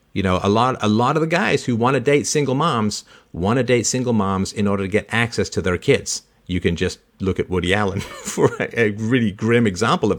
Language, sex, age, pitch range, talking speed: English, male, 50-69, 100-125 Hz, 245 wpm